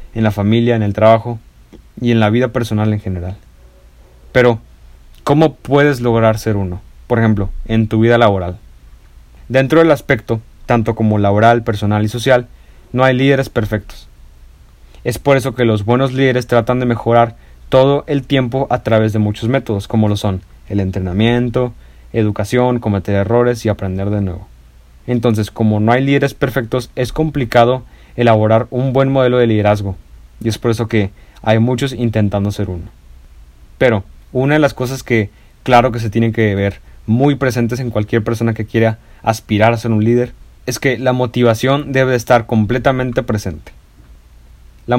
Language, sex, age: Spanish, male, 30-49